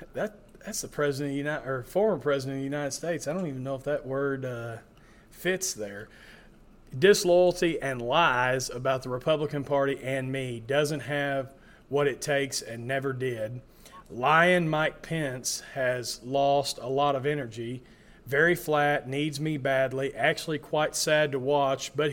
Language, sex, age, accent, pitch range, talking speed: English, male, 40-59, American, 135-155 Hz, 165 wpm